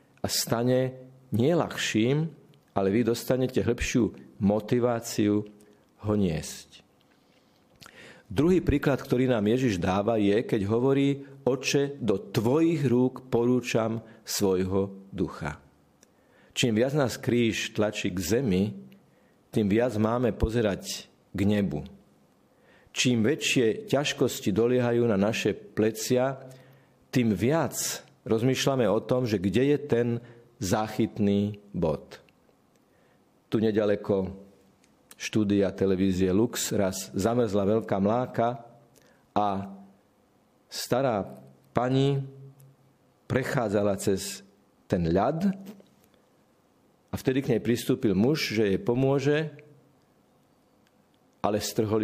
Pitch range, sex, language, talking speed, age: 100-130 Hz, male, Slovak, 95 wpm, 50-69